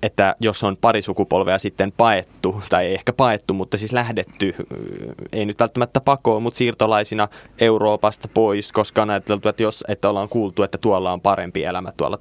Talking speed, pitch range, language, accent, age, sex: 170 wpm, 95-110 Hz, Finnish, native, 20-39, male